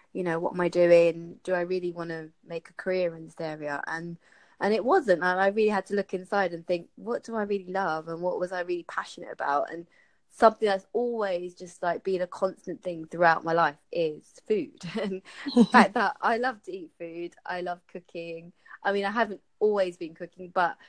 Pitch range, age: 170-205 Hz, 20-39